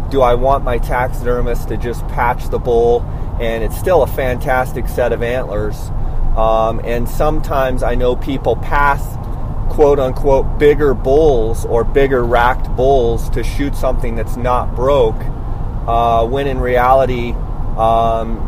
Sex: male